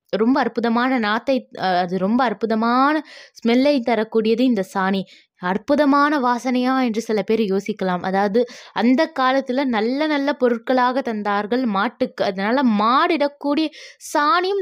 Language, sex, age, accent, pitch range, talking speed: Tamil, female, 20-39, native, 230-285 Hz, 110 wpm